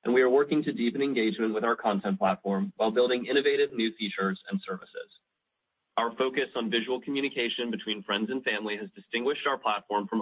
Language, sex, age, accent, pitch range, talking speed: English, male, 30-49, American, 105-130 Hz, 190 wpm